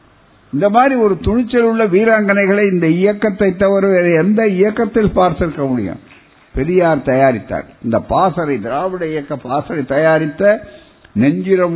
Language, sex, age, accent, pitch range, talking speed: Tamil, male, 60-79, native, 150-210 Hz, 110 wpm